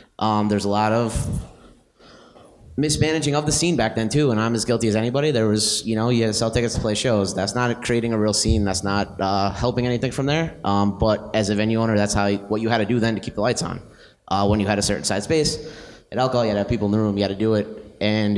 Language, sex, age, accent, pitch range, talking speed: English, male, 20-39, American, 100-120 Hz, 285 wpm